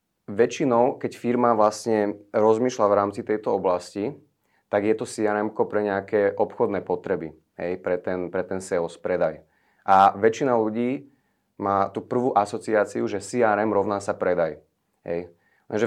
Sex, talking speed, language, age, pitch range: male, 140 wpm, Czech, 30-49, 95-110 Hz